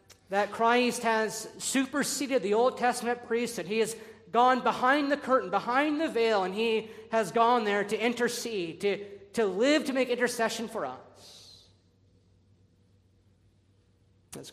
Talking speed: 135 wpm